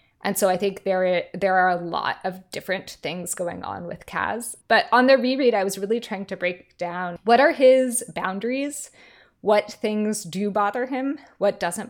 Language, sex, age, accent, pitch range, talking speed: English, female, 20-39, American, 185-235 Hz, 190 wpm